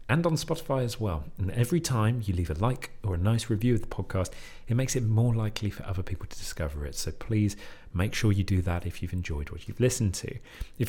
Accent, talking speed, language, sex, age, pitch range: British, 250 wpm, English, male, 40-59, 85-120 Hz